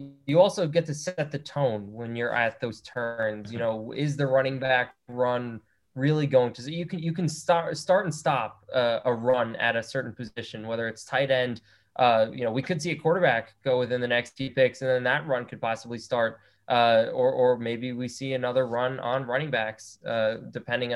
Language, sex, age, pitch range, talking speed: English, male, 20-39, 115-140 Hz, 215 wpm